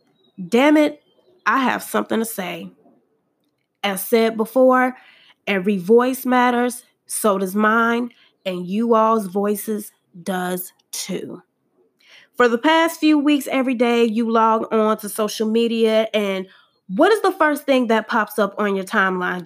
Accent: American